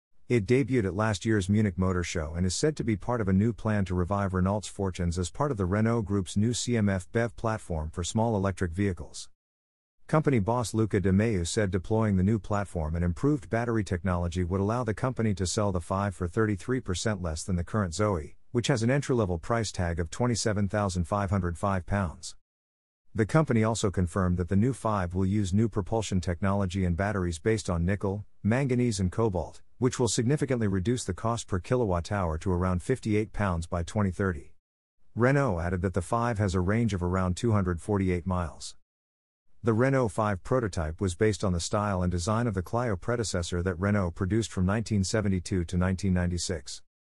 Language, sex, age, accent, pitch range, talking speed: English, male, 50-69, American, 90-115 Hz, 180 wpm